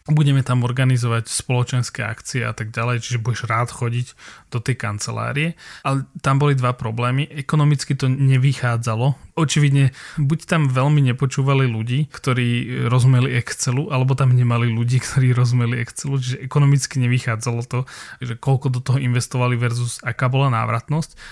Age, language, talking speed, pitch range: 20-39, Slovak, 145 wpm, 120-140 Hz